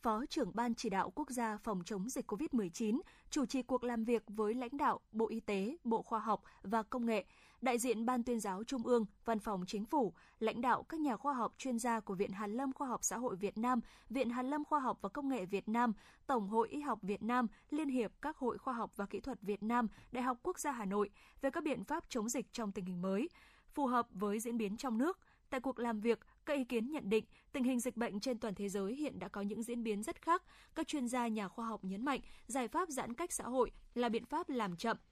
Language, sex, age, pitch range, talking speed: Vietnamese, female, 20-39, 215-265 Hz, 260 wpm